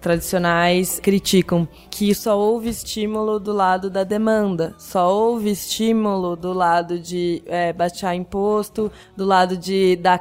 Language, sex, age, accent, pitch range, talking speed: Portuguese, female, 20-39, Brazilian, 180-210 Hz, 135 wpm